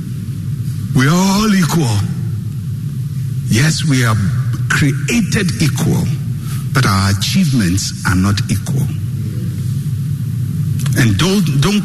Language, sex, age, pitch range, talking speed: English, male, 60-79, 125-145 Hz, 90 wpm